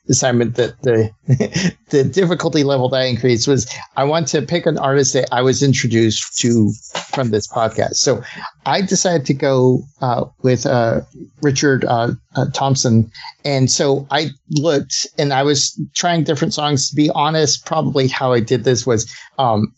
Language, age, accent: English, 50-69, American